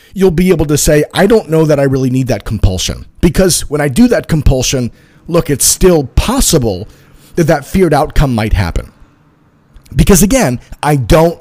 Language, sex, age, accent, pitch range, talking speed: English, male, 40-59, American, 130-175 Hz, 180 wpm